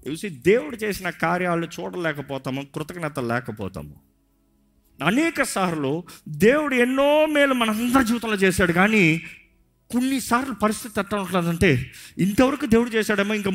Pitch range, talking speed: 135-215 Hz, 100 wpm